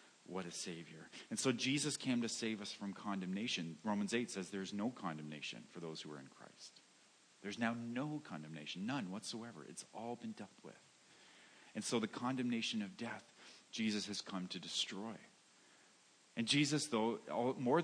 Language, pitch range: English, 100-125 Hz